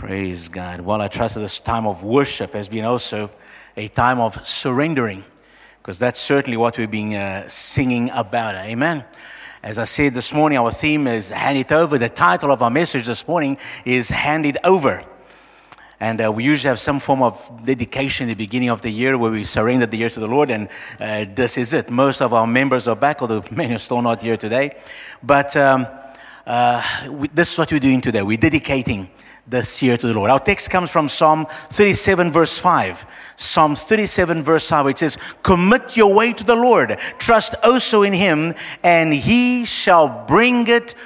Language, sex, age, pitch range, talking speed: English, male, 50-69, 120-195 Hz, 200 wpm